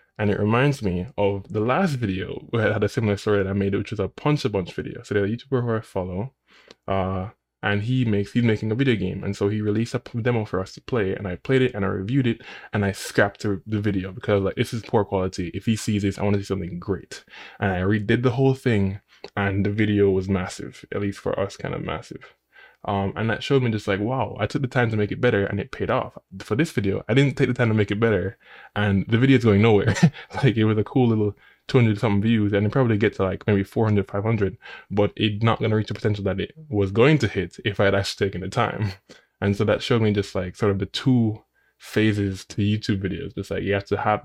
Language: English